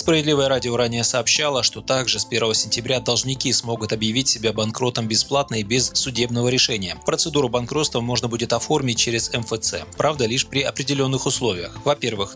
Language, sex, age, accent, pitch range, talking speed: Russian, male, 20-39, native, 110-135 Hz, 155 wpm